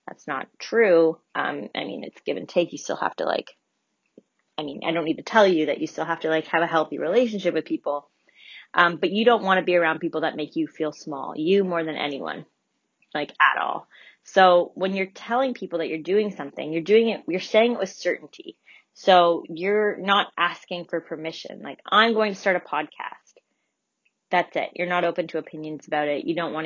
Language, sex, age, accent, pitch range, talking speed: English, female, 20-39, American, 160-190 Hz, 220 wpm